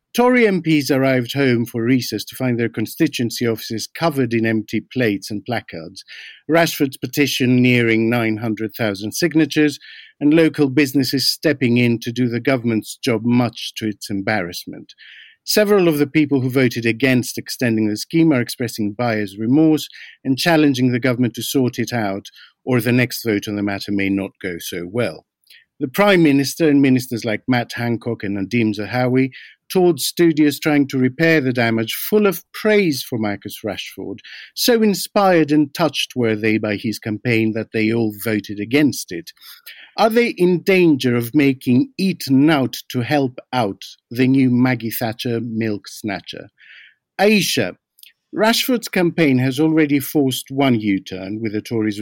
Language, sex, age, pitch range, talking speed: English, male, 50-69, 110-150 Hz, 160 wpm